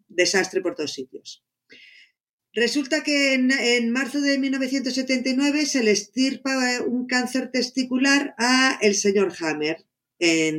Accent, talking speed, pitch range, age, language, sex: Spanish, 125 wpm, 195-270 Hz, 50-69, Spanish, female